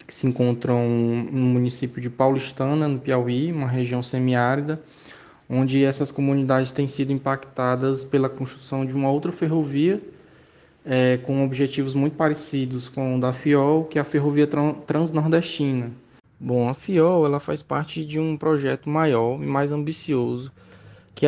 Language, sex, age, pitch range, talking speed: Portuguese, male, 20-39, 130-160 Hz, 140 wpm